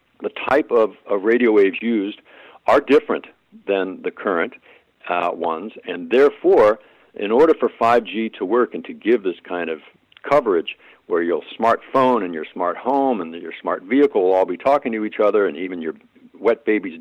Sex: male